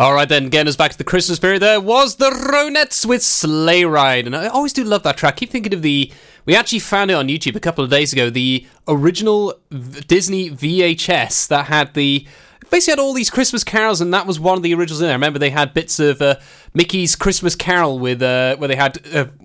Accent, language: British, English